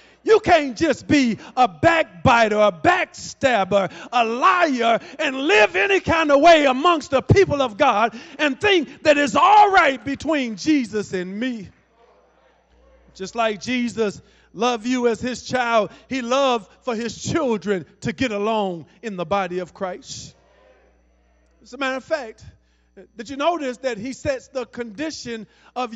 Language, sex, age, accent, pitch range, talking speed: English, male, 40-59, American, 230-300 Hz, 155 wpm